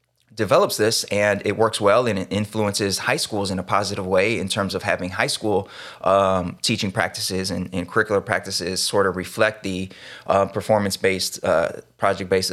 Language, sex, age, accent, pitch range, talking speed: English, male, 20-39, American, 95-110 Hz, 170 wpm